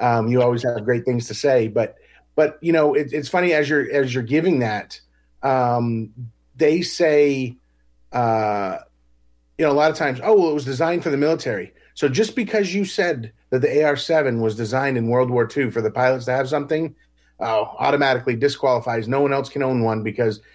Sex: male